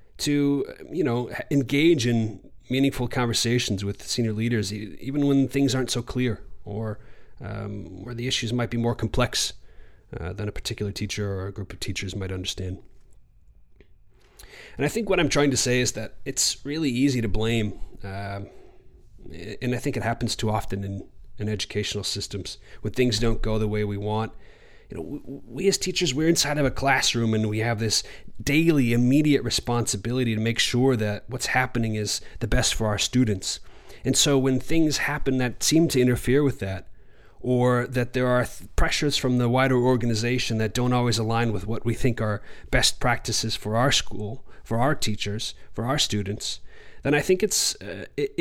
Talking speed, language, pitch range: 180 wpm, English, 105-135 Hz